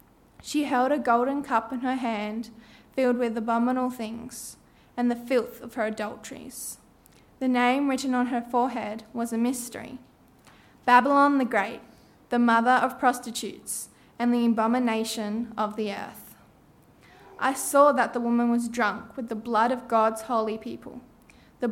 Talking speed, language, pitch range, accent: 150 wpm, English, 225-250 Hz, Australian